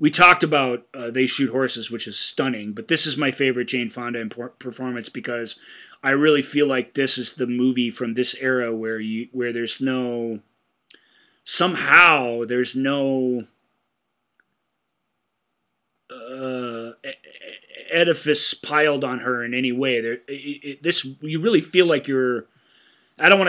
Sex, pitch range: male, 125-155 Hz